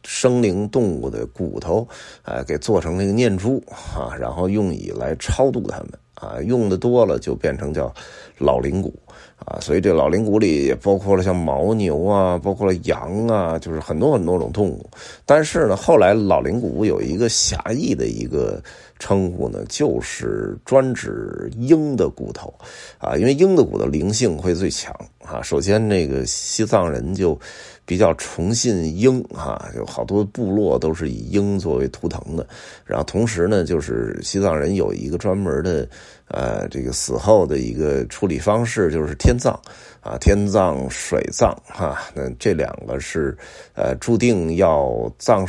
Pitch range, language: 85-115 Hz, Chinese